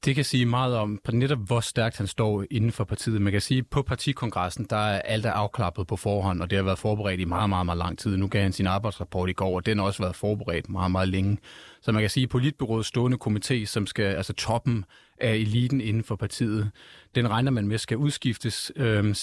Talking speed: 235 wpm